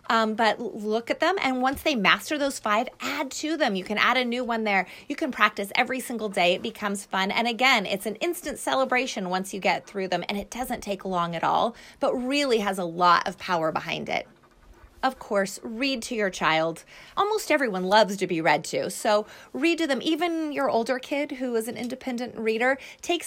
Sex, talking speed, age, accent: female, 215 wpm, 30-49, American